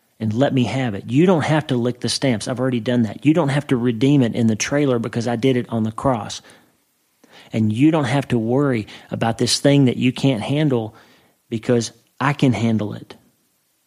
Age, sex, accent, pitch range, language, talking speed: 40-59, male, American, 110-130 Hz, English, 215 wpm